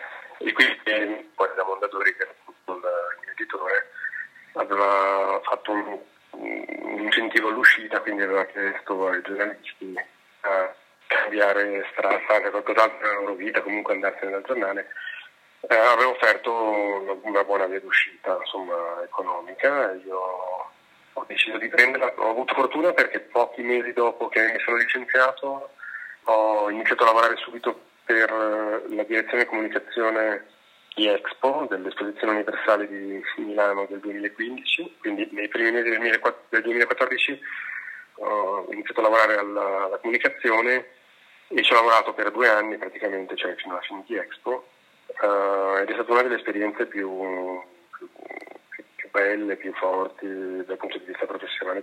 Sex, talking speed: male, 135 wpm